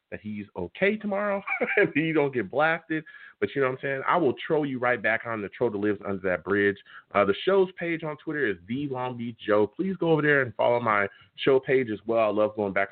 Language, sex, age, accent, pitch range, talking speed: English, male, 30-49, American, 110-160 Hz, 250 wpm